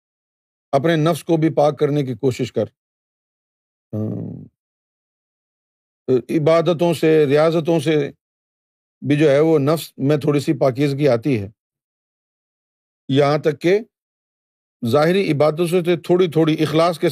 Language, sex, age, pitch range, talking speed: Urdu, male, 50-69, 145-195 Hz, 120 wpm